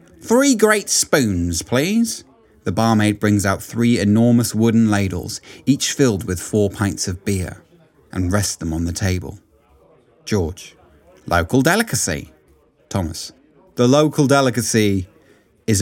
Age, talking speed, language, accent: 30-49, 125 wpm, English, British